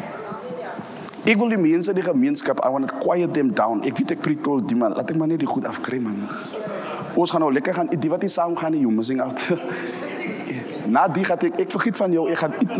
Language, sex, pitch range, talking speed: English, male, 170-285 Hz, 235 wpm